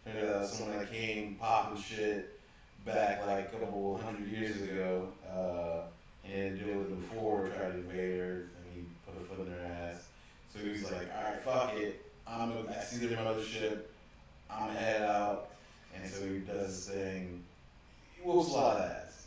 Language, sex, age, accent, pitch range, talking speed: English, male, 20-39, American, 90-110 Hz, 175 wpm